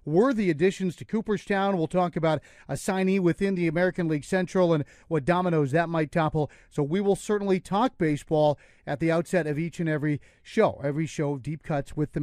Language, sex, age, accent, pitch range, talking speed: English, male, 40-59, American, 155-195 Hz, 200 wpm